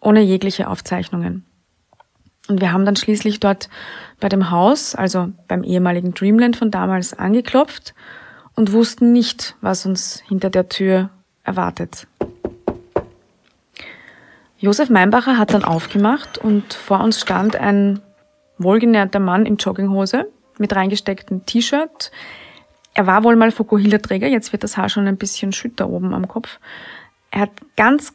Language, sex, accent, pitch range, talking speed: German, female, German, 200-235 Hz, 135 wpm